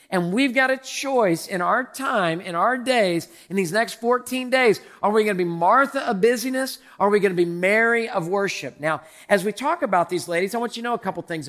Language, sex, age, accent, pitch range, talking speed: English, male, 40-59, American, 180-230 Hz, 245 wpm